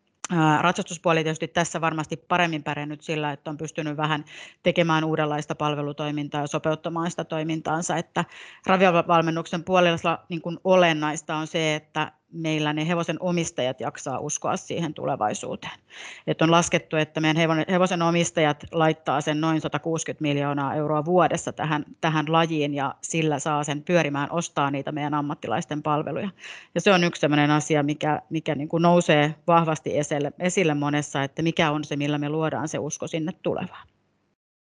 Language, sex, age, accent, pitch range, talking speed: Finnish, female, 30-49, native, 150-170 Hz, 140 wpm